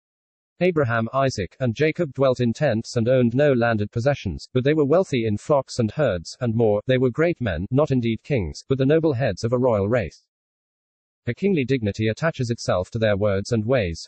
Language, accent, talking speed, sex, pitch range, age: English, British, 200 wpm, male, 110-145 Hz, 40-59